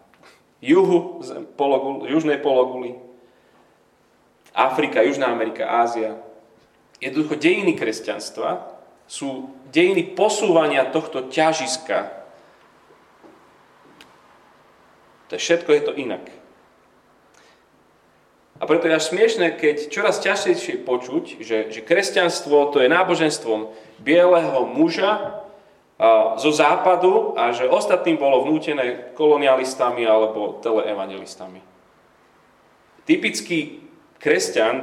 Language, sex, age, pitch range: Slovak, male, 30-49, 125-195 Hz